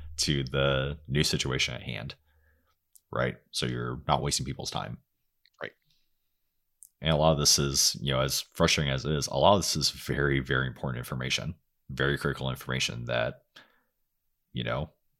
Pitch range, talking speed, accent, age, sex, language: 65-85 Hz, 165 wpm, American, 30-49, male, English